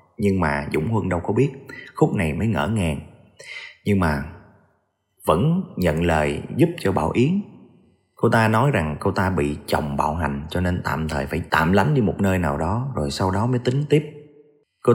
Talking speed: 200 wpm